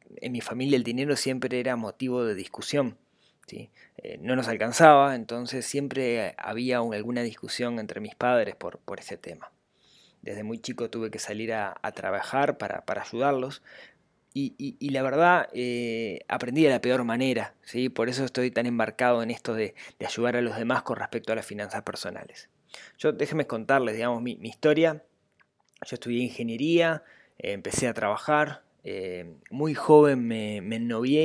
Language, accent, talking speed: Spanish, Argentinian, 170 wpm